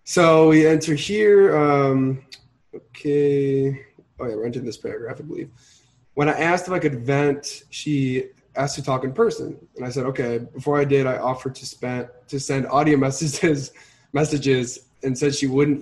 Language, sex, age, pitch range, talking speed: English, male, 20-39, 125-145 Hz, 180 wpm